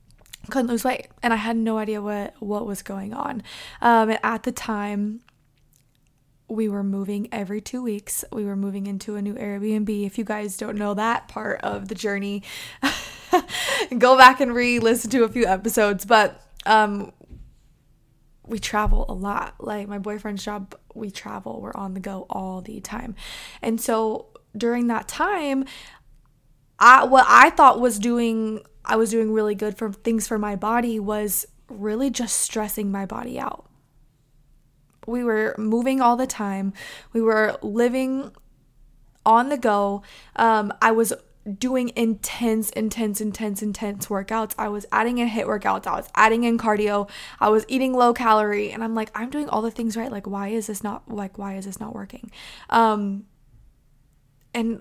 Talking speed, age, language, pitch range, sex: 170 wpm, 20-39, English, 200-230 Hz, female